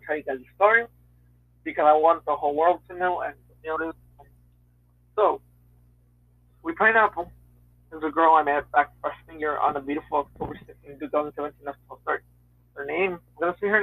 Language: English